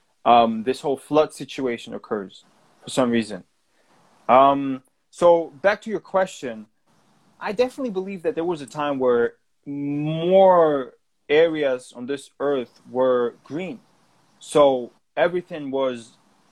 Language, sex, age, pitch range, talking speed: English, male, 20-39, 125-165 Hz, 125 wpm